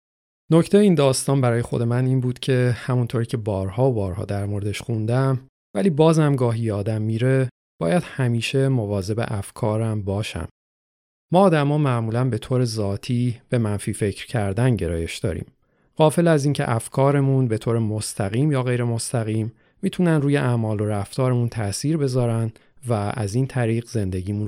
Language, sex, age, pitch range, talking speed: Persian, male, 40-59, 105-130 Hz, 155 wpm